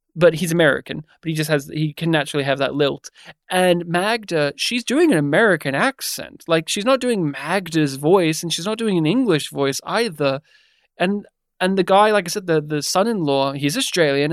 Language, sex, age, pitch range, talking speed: English, male, 20-39, 155-205 Hz, 195 wpm